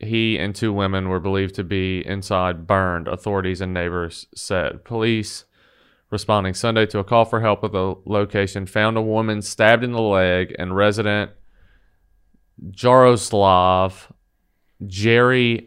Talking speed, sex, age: 140 wpm, male, 30-49